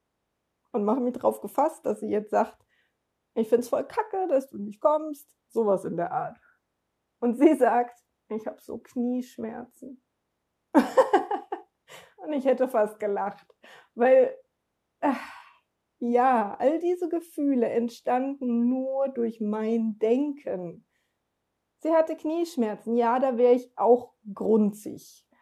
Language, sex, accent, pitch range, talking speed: German, female, German, 220-270 Hz, 125 wpm